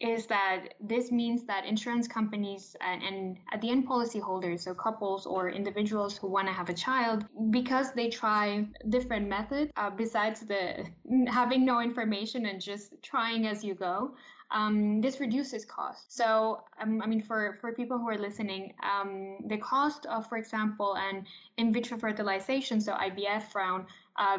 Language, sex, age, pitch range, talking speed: English, female, 10-29, 200-235 Hz, 165 wpm